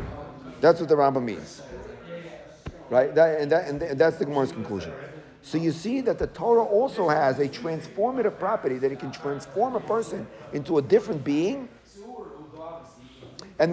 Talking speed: 150 wpm